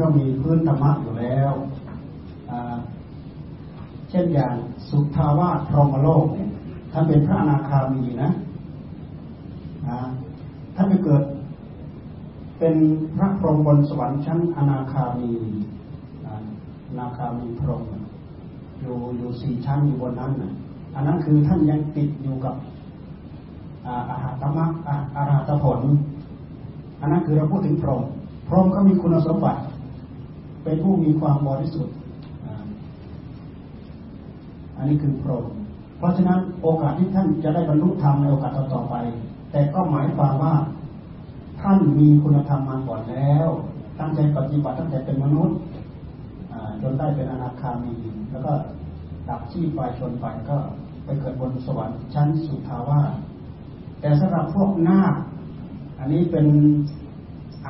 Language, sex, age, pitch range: Thai, male, 30-49, 130-160 Hz